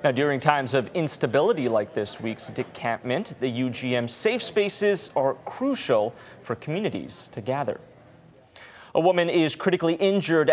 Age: 30-49